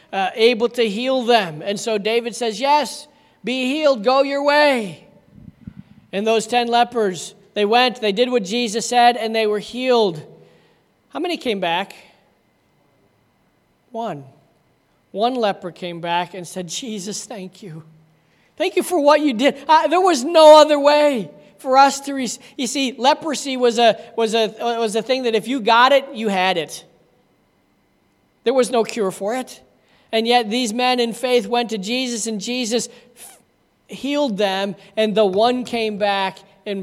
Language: English